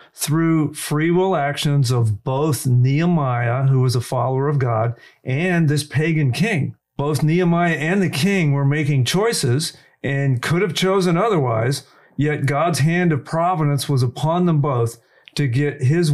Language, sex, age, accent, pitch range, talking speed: English, male, 50-69, American, 125-155 Hz, 155 wpm